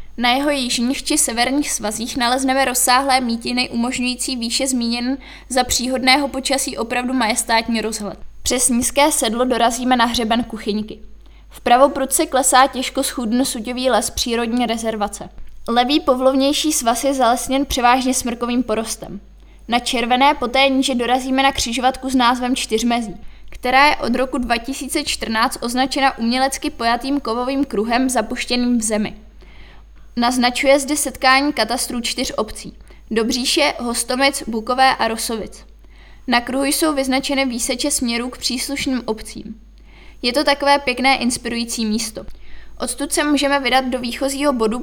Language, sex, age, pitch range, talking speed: Czech, female, 20-39, 235-270 Hz, 135 wpm